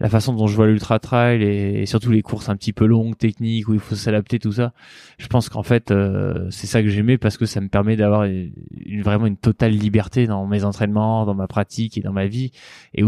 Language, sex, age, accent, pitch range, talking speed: French, male, 20-39, French, 100-120 Hz, 250 wpm